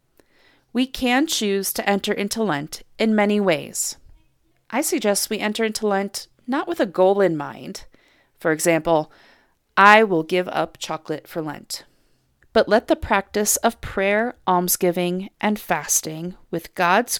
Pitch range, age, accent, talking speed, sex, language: 170-220 Hz, 30-49, American, 145 wpm, female, English